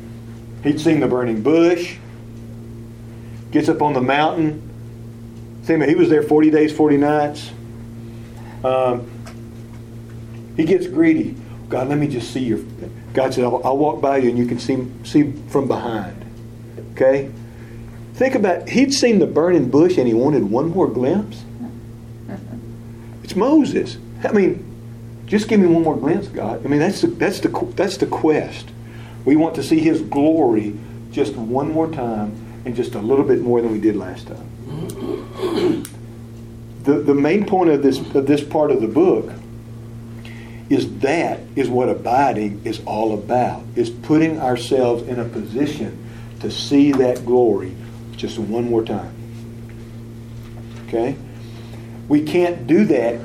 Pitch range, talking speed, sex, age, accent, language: 115-140 Hz, 150 wpm, male, 50-69, American, English